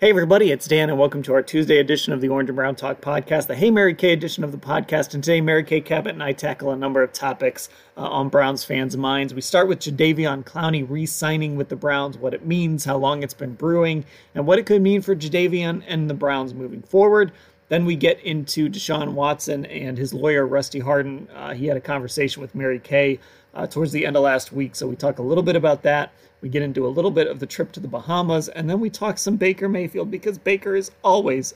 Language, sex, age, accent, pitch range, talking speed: English, male, 30-49, American, 135-170 Hz, 240 wpm